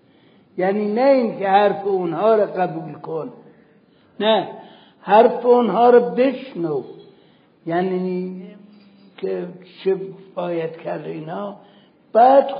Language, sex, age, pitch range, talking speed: Persian, male, 60-79, 185-230 Hz, 100 wpm